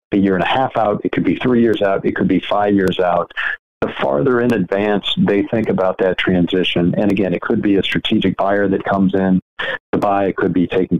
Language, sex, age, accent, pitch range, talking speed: English, male, 50-69, American, 90-105 Hz, 240 wpm